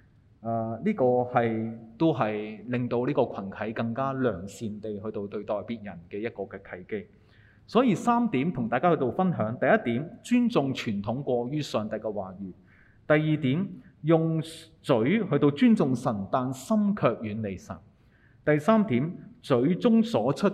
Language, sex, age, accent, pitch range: Chinese, male, 30-49, native, 110-160 Hz